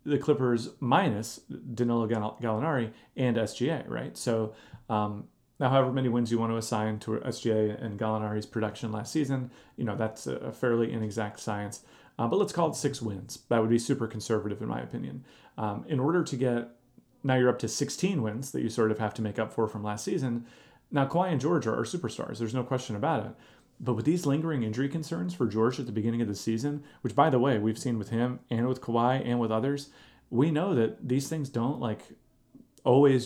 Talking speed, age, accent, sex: 210 wpm, 30-49, American, male